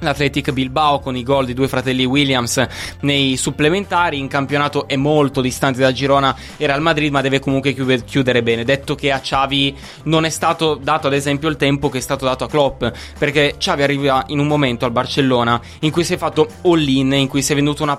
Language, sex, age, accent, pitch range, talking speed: Italian, male, 20-39, native, 130-150 Hz, 215 wpm